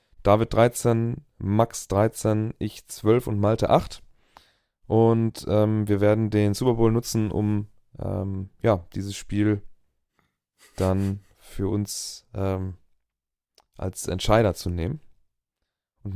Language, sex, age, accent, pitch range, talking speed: German, male, 30-49, German, 100-120 Hz, 115 wpm